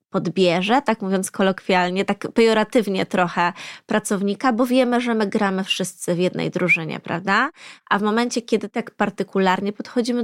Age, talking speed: 20-39, 145 wpm